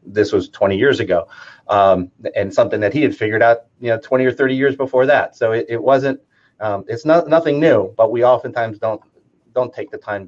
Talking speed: 220 wpm